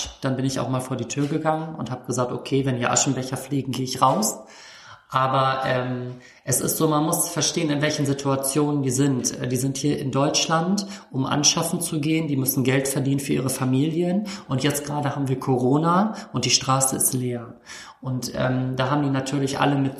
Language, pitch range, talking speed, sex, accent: German, 130-145 Hz, 205 wpm, male, German